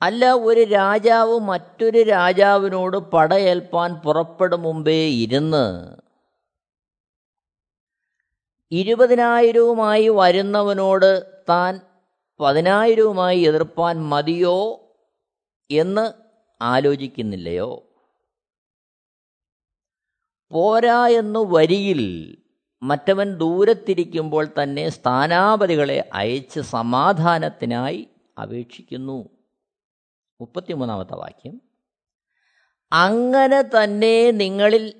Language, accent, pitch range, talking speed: Malayalam, native, 150-215 Hz, 55 wpm